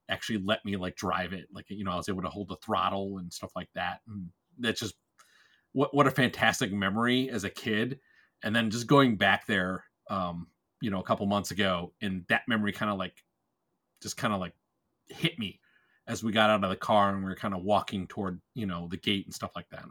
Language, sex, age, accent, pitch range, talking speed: English, male, 30-49, American, 95-120 Hz, 240 wpm